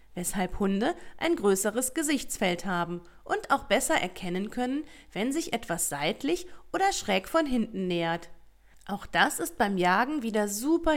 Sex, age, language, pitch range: female, 30-49, German, 180-280 Hz